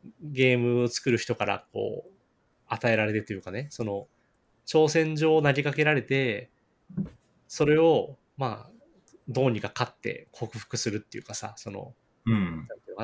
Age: 20-39